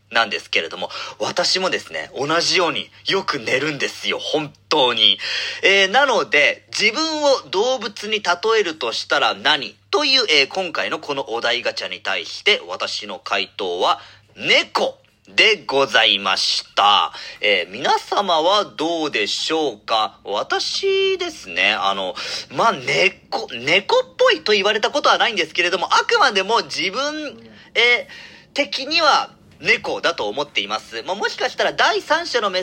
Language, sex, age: Japanese, male, 40-59